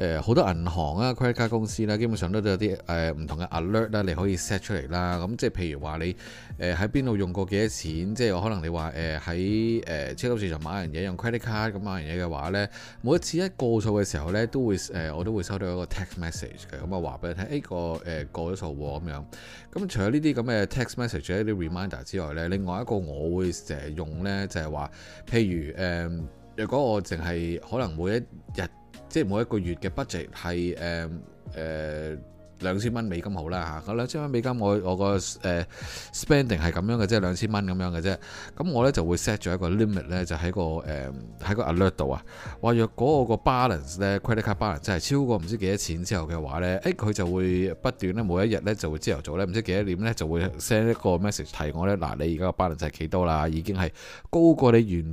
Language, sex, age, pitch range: Chinese, male, 20-39, 85-110 Hz